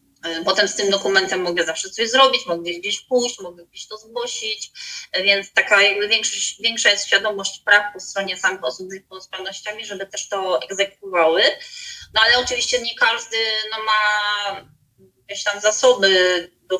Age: 20-39